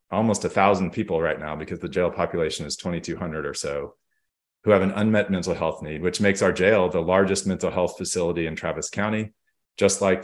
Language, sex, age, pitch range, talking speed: English, male, 40-59, 90-110 Hz, 205 wpm